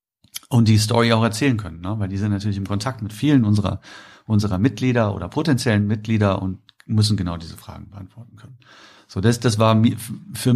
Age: 50-69